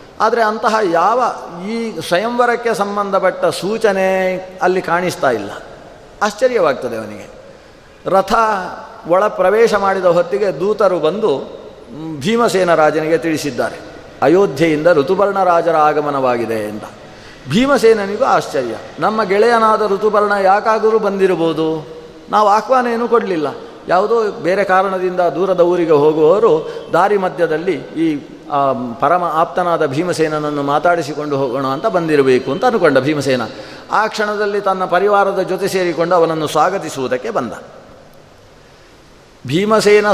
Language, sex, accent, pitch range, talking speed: Kannada, male, native, 160-210 Hz, 100 wpm